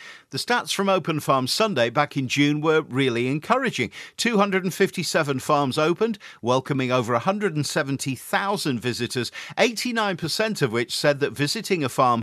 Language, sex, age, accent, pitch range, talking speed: English, male, 50-69, British, 125-180 Hz, 135 wpm